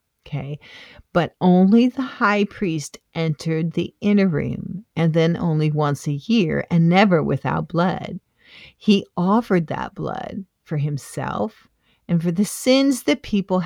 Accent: American